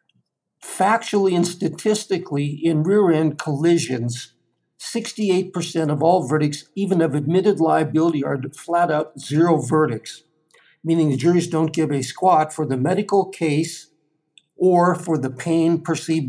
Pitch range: 155-180 Hz